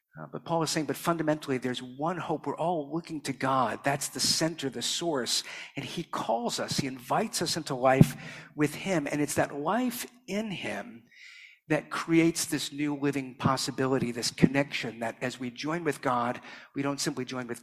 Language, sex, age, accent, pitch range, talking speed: English, male, 50-69, American, 125-160 Hz, 190 wpm